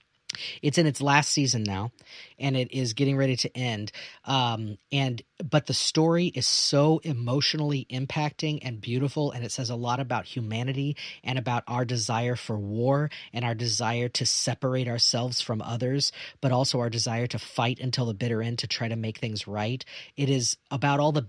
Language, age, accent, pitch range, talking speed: English, 40-59, American, 115-140 Hz, 185 wpm